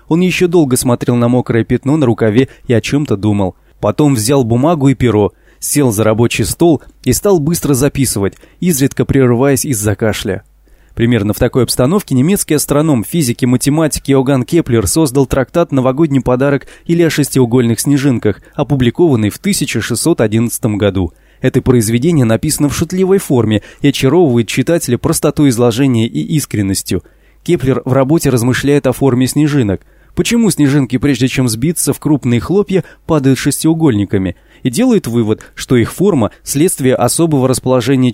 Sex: male